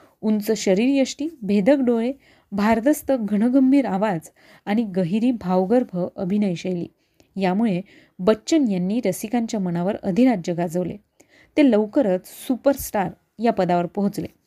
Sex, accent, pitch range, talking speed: female, native, 195-255 Hz, 70 wpm